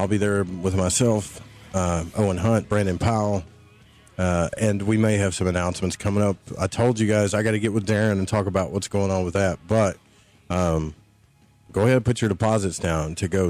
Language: English